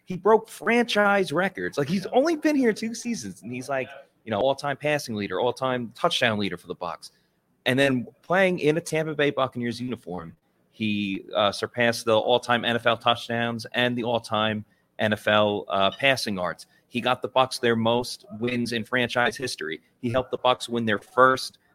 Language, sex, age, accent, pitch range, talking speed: English, male, 30-49, American, 105-150 Hz, 180 wpm